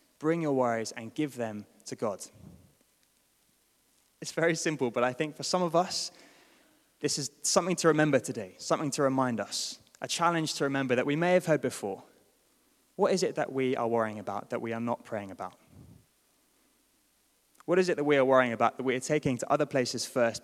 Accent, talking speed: British, 200 wpm